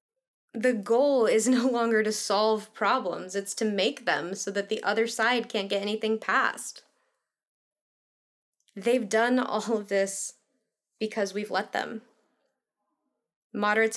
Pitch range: 205-265 Hz